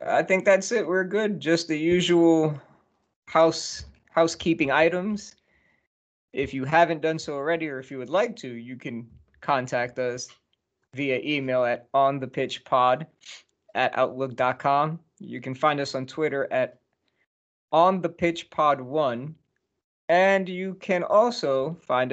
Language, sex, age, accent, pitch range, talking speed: English, male, 20-39, American, 130-160 Hz, 135 wpm